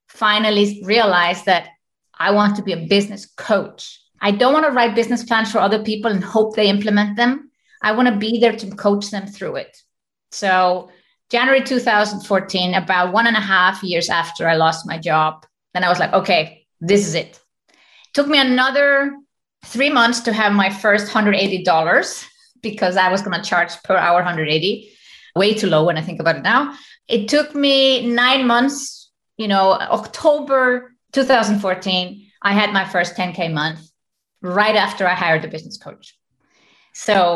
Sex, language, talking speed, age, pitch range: female, English, 175 wpm, 30-49, 180-235 Hz